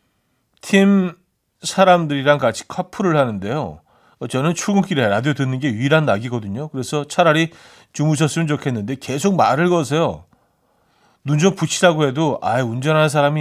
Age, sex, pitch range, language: 40-59, male, 120-165 Hz, Korean